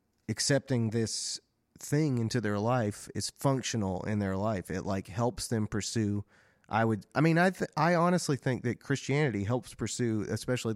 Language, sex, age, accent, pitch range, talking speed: English, male, 30-49, American, 95-120 Hz, 160 wpm